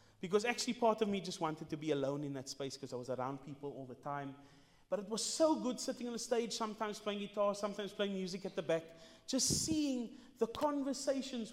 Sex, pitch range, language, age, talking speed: male, 150-245 Hz, English, 30-49, 225 wpm